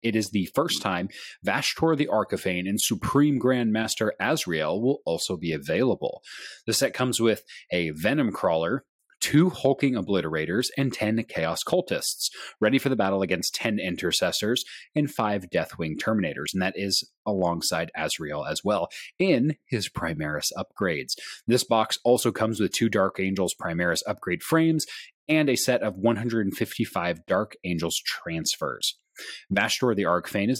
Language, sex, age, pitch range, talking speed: English, male, 30-49, 95-125 Hz, 150 wpm